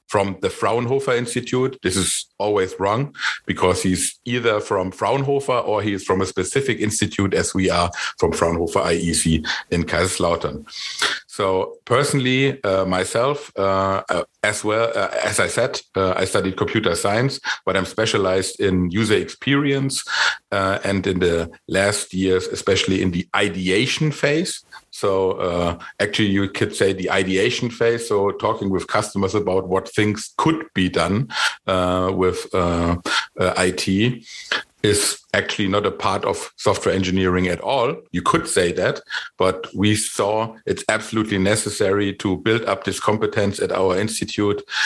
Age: 50-69